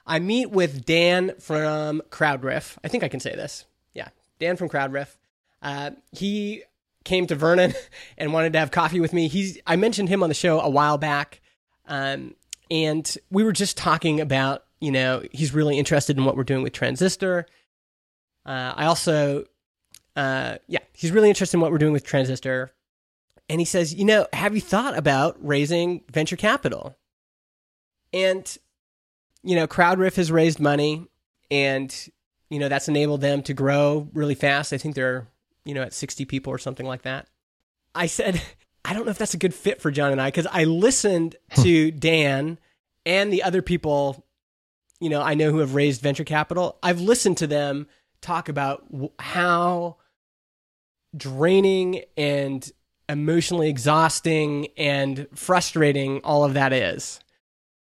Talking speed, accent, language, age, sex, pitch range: 165 wpm, American, English, 20-39, male, 140-175 Hz